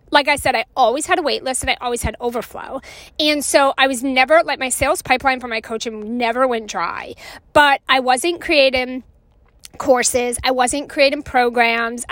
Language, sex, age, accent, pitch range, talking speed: English, female, 30-49, American, 245-300 Hz, 190 wpm